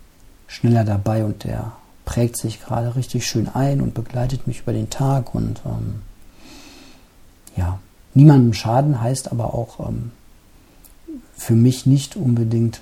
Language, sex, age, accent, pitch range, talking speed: German, male, 50-69, German, 110-130 Hz, 135 wpm